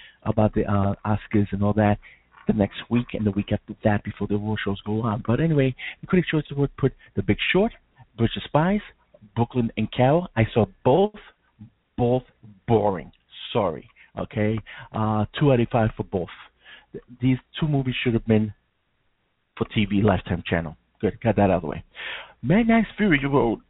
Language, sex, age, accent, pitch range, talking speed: English, male, 50-69, American, 105-135 Hz, 185 wpm